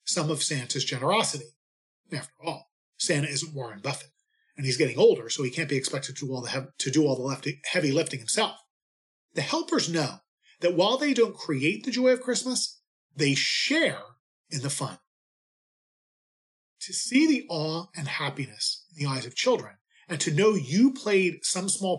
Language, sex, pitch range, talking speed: English, male, 140-205 Hz, 170 wpm